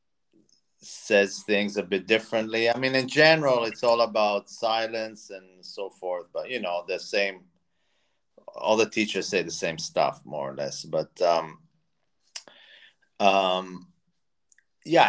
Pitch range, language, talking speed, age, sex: 95-125 Hz, English, 140 wpm, 30-49, male